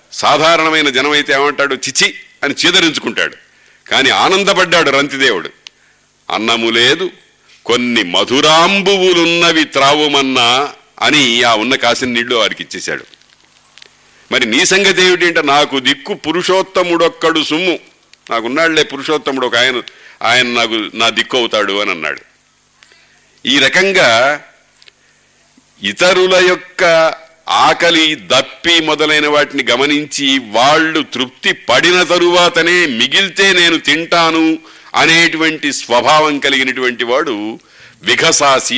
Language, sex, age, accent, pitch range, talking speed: Telugu, male, 50-69, native, 135-170 Hz, 95 wpm